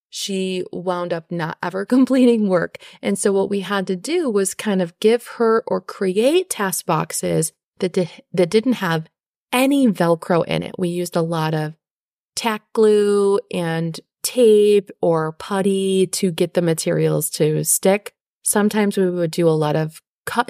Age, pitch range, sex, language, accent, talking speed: 30-49, 180-230 Hz, female, English, American, 165 wpm